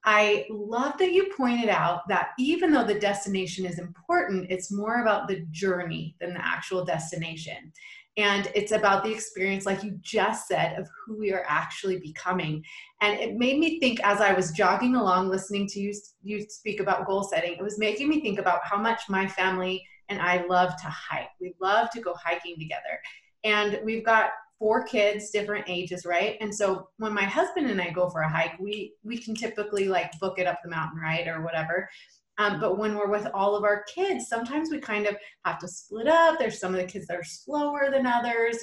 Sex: female